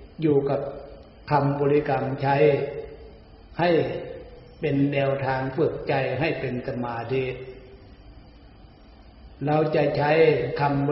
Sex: male